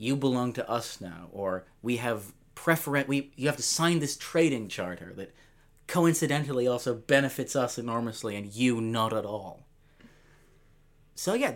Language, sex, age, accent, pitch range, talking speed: English, male, 30-49, American, 125-175 Hz, 155 wpm